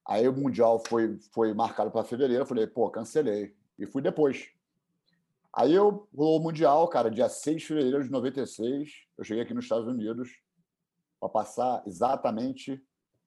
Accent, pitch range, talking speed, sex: Brazilian, 105-175 Hz, 160 wpm, male